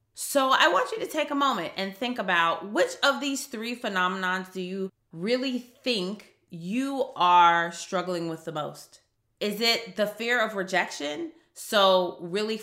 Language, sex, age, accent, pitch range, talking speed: English, female, 30-49, American, 200-275 Hz, 160 wpm